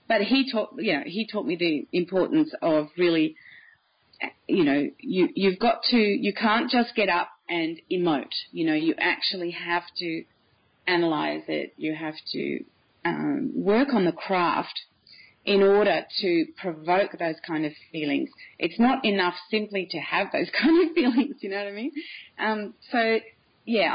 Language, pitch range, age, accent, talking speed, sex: English, 170-255 Hz, 30-49, Australian, 170 wpm, female